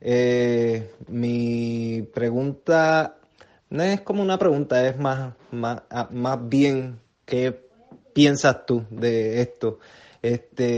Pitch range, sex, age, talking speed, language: 115-135 Hz, male, 20-39, 105 wpm, Spanish